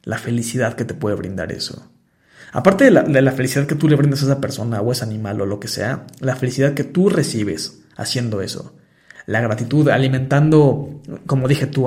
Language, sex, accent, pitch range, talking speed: Spanish, male, Mexican, 125-150 Hz, 205 wpm